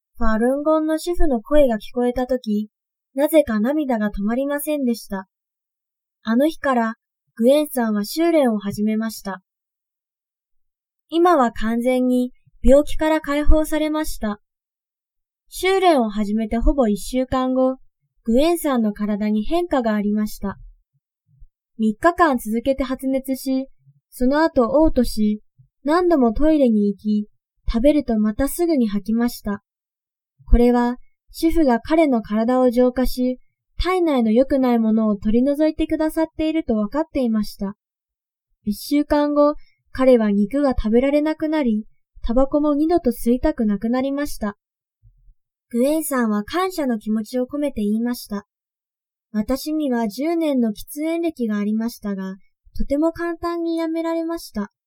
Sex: female